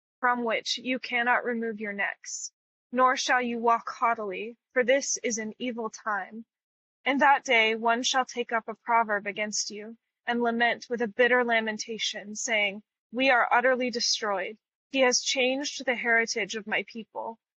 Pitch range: 215-255 Hz